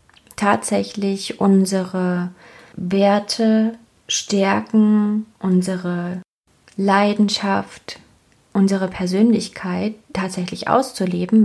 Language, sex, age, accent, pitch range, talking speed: German, female, 20-39, German, 185-215 Hz, 50 wpm